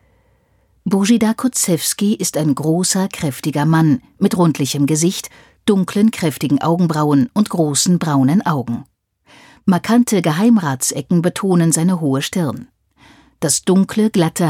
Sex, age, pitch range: female, 50-69, 155-200 Hz